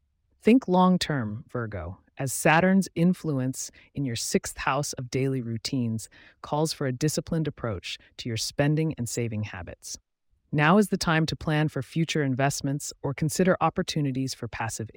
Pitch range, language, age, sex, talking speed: 115-160 Hz, English, 30-49, female, 150 wpm